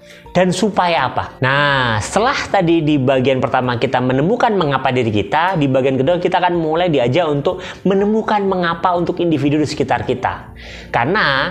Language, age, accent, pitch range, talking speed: Indonesian, 20-39, native, 135-185 Hz, 155 wpm